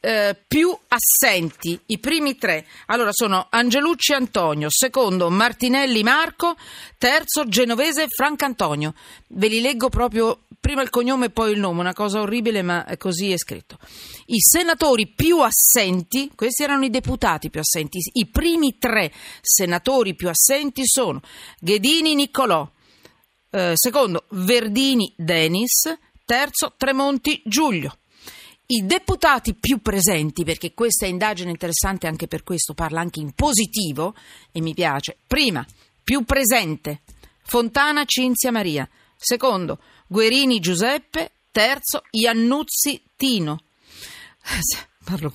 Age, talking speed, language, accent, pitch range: 40-59, 125 wpm, Italian, native, 180-270 Hz